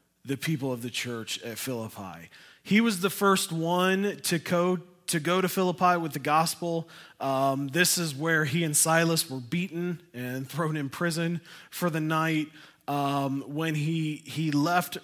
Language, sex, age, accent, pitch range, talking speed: English, male, 20-39, American, 130-165 Hz, 160 wpm